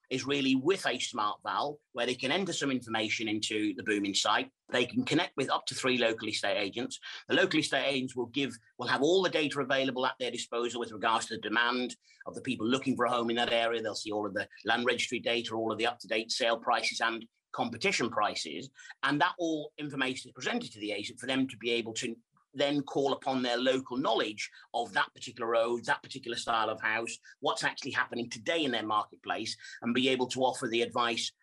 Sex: male